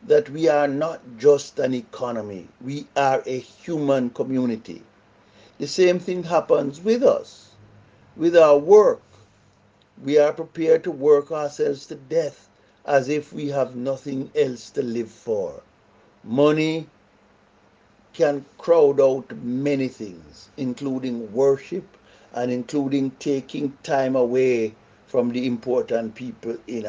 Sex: male